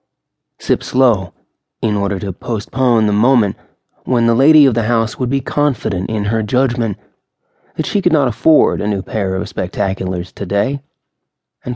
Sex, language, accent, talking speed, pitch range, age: male, English, American, 165 wpm, 100-130 Hz, 30-49